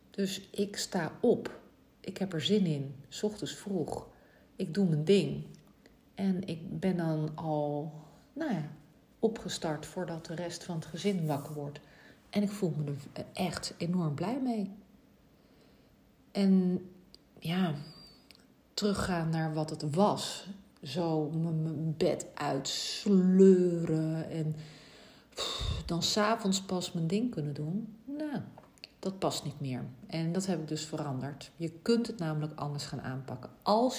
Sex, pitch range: female, 155-200 Hz